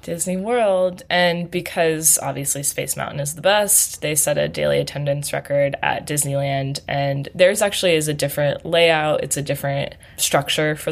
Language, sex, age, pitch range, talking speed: English, female, 20-39, 140-170 Hz, 165 wpm